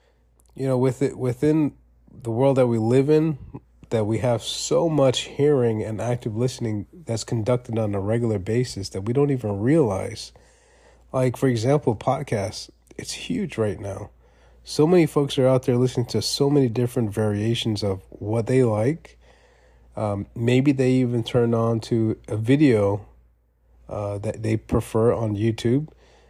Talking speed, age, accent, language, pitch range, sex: 160 wpm, 30-49, American, English, 105-125 Hz, male